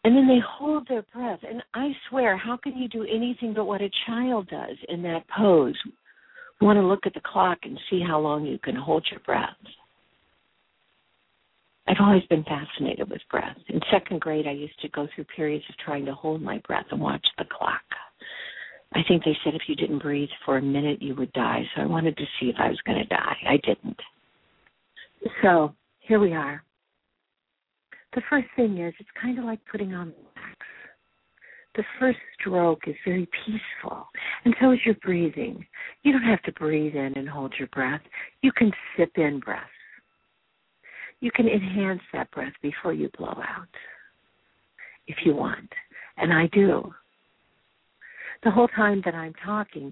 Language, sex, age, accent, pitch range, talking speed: English, female, 60-79, American, 155-225 Hz, 180 wpm